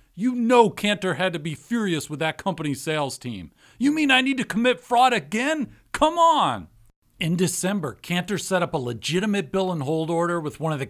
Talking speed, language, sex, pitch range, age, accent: 205 wpm, English, male, 150-230 Hz, 40-59, American